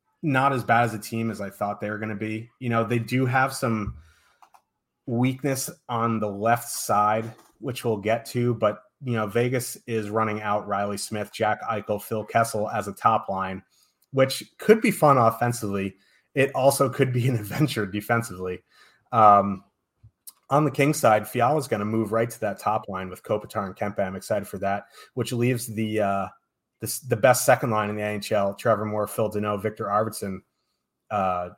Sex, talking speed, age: male, 190 wpm, 30-49